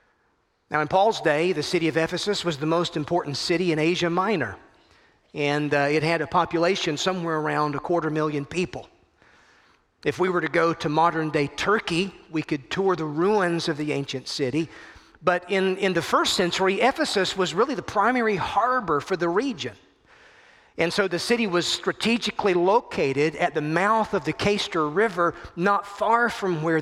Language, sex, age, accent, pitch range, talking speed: English, male, 40-59, American, 160-205 Hz, 175 wpm